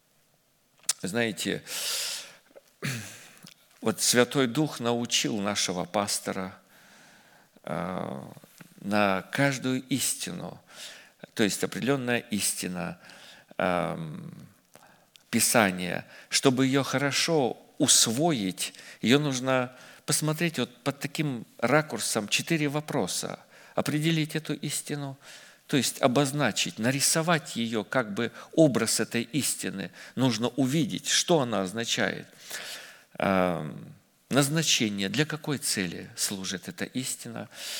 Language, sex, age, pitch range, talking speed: Russian, male, 50-69, 115-150 Hz, 85 wpm